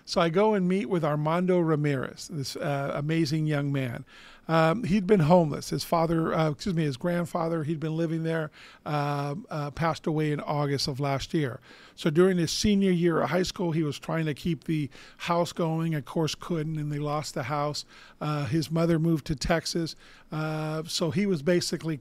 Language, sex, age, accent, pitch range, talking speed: English, male, 50-69, American, 150-170 Hz, 195 wpm